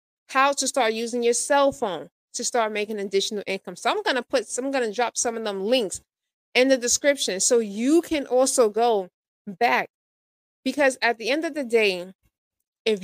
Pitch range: 195-255 Hz